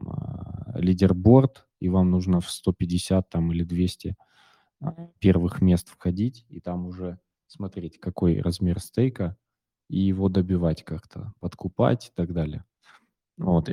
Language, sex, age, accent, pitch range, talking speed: Russian, male, 20-39, native, 90-110 Hz, 120 wpm